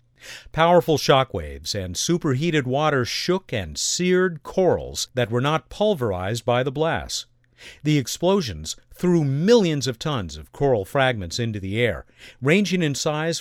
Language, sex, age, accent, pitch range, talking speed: English, male, 50-69, American, 120-170 Hz, 140 wpm